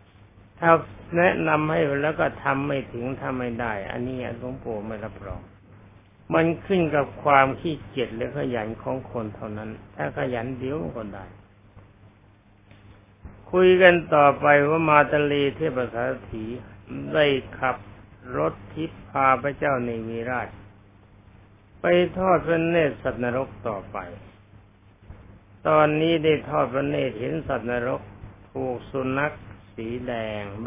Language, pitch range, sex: Thai, 105-145 Hz, male